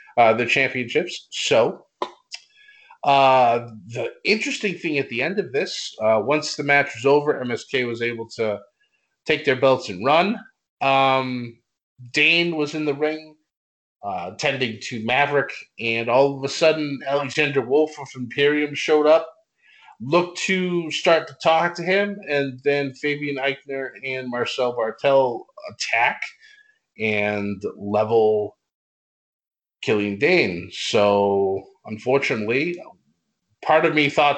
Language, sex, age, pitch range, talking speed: English, male, 30-49, 110-155 Hz, 130 wpm